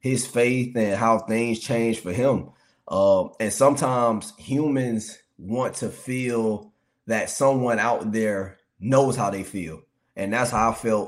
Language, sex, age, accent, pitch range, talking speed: English, male, 20-39, American, 105-130 Hz, 150 wpm